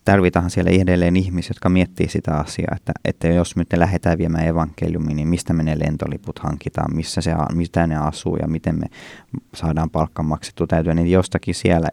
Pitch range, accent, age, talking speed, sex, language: 85-100 Hz, native, 20-39, 180 wpm, male, Finnish